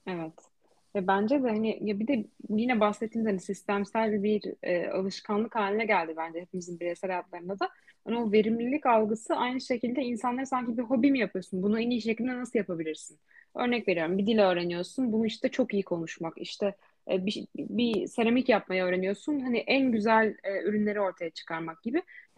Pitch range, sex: 200-270 Hz, female